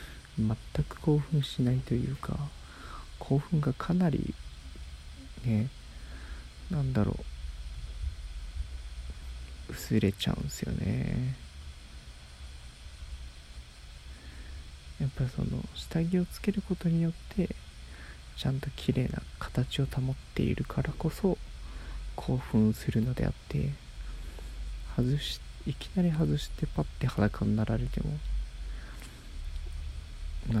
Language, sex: Japanese, male